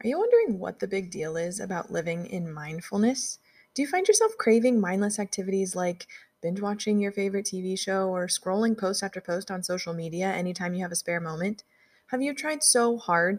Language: English